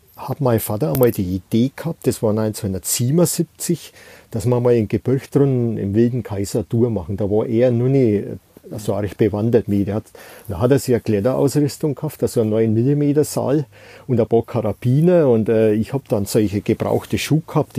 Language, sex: German, male